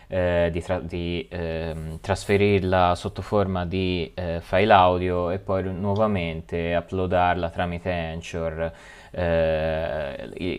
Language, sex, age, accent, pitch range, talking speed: Italian, male, 20-39, native, 85-100 Hz, 115 wpm